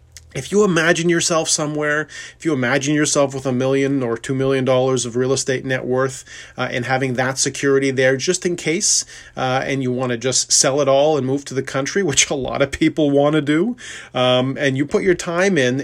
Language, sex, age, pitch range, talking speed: English, male, 30-49, 125-150 Hz, 225 wpm